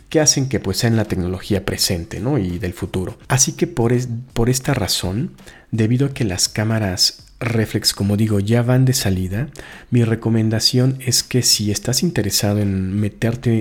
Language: Spanish